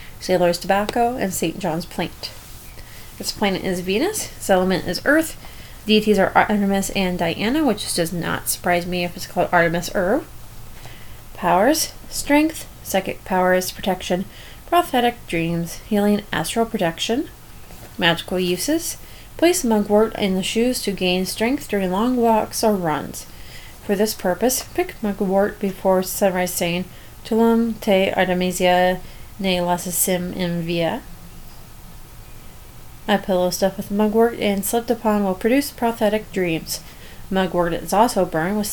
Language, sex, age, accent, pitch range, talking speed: English, female, 30-49, American, 180-220 Hz, 135 wpm